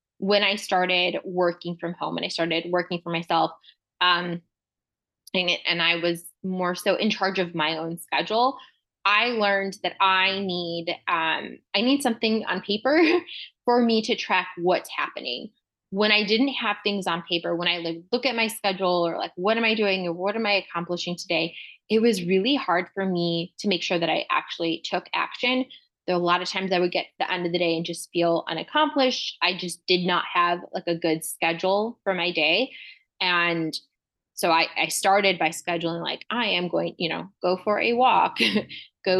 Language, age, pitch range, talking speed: English, 20-39, 175-210 Hz, 200 wpm